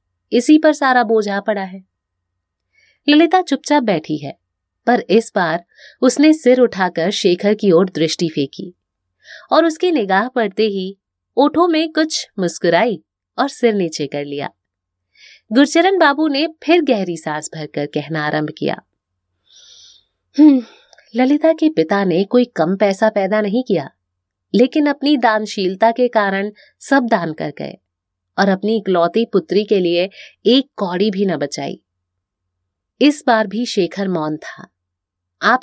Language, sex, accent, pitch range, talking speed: Hindi, female, native, 165-255 Hz, 140 wpm